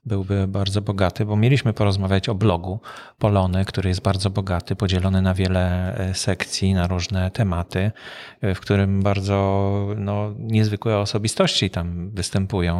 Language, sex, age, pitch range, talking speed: Polish, male, 40-59, 95-110 Hz, 125 wpm